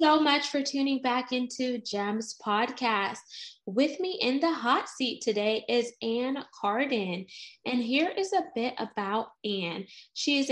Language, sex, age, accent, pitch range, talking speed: English, female, 10-29, American, 210-285 Hz, 155 wpm